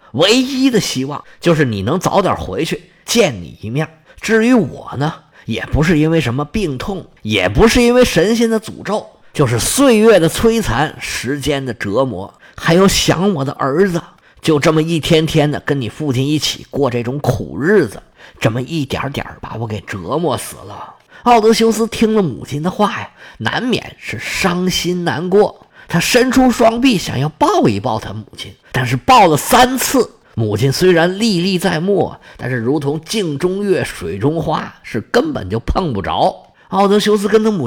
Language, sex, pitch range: Chinese, male, 135-205 Hz